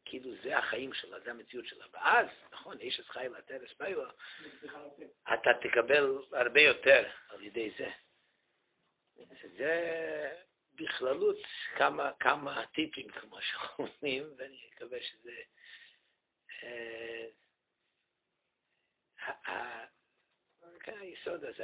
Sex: male